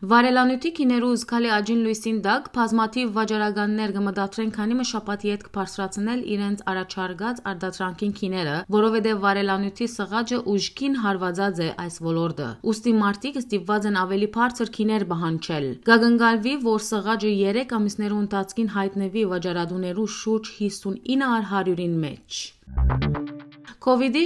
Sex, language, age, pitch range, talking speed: female, English, 30-49, 195-230 Hz, 70 wpm